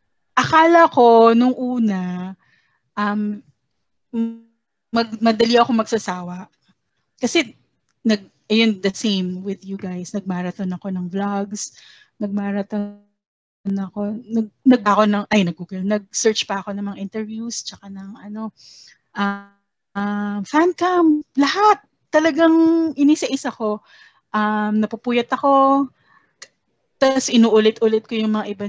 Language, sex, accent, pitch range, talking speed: English, female, Filipino, 195-235 Hz, 110 wpm